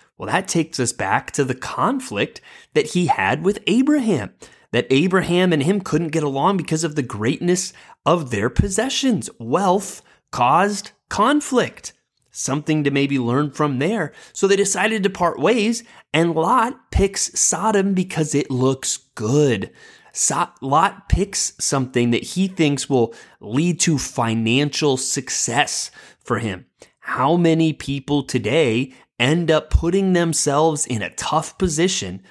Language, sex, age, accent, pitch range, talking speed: English, male, 30-49, American, 130-180 Hz, 140 wpm